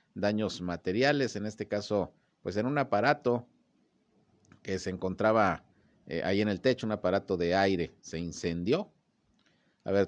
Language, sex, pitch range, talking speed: Spanish, male, 90-110 Hz, 145 wpm